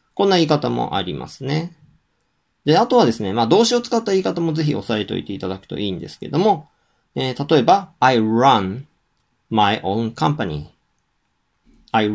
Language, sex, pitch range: Japanese, male, 105-170 Hz